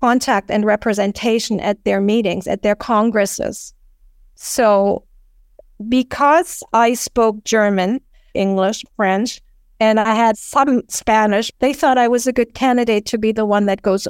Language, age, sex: English, 50-69, female